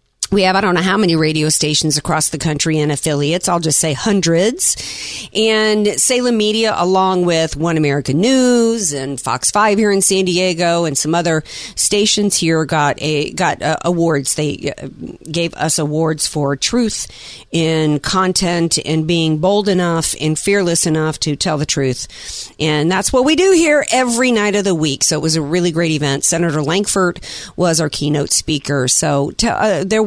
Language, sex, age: English, female, 50-69